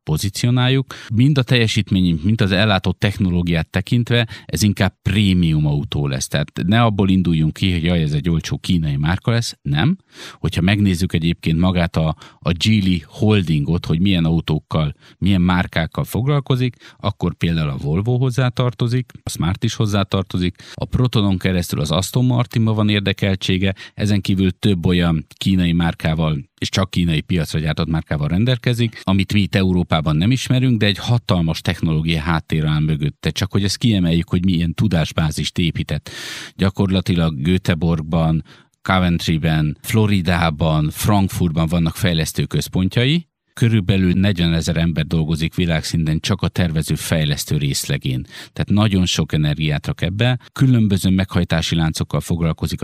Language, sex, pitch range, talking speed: Hungarian, male, 80-110 Hz, 140 wpm